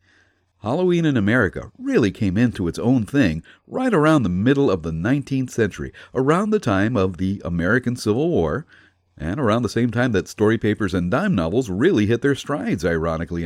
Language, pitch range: English, 90-130 Hz